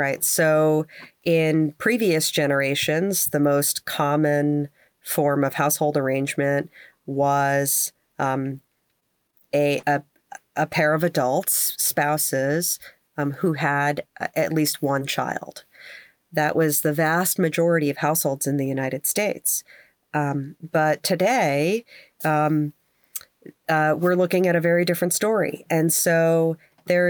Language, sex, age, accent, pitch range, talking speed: English, female, 30-49, American, 145-180 Hz, 120 wpm